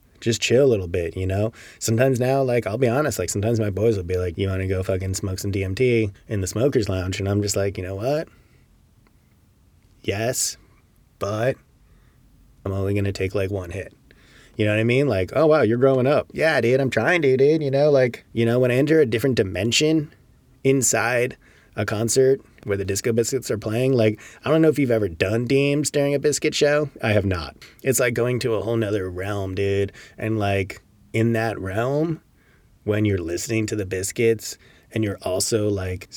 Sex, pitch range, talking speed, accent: male, 100-130 Hz, 210 wpm, American